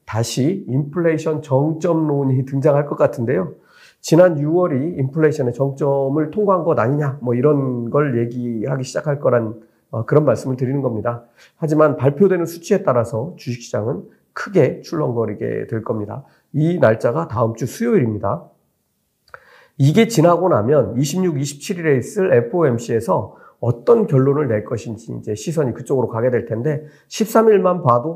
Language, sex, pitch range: Korean, male, 120-165 Hz